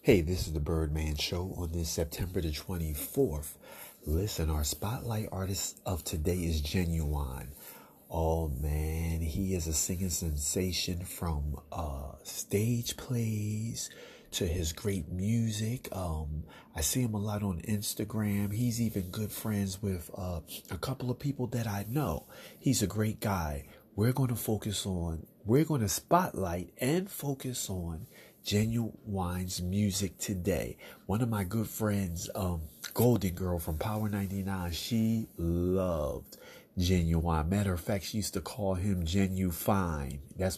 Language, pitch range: English, 80-105 Hz